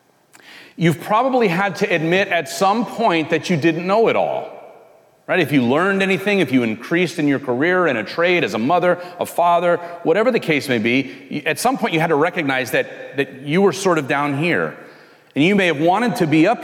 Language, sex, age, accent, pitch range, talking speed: English, male, 40-59, American, 145-200 Hz, 220 wpm